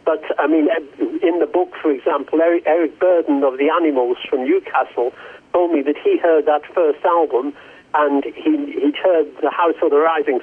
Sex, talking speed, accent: male, 180 wpm, British